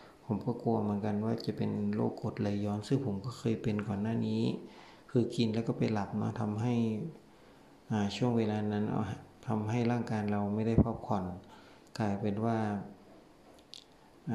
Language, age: Thai, 60-79